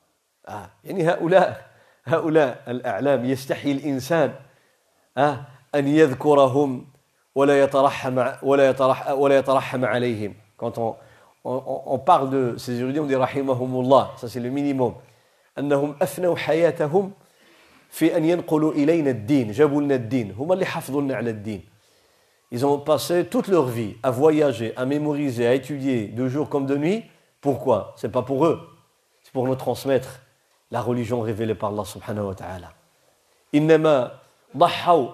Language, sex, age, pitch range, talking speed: French, male, 50-69, 130-170 Hz, 50 wpm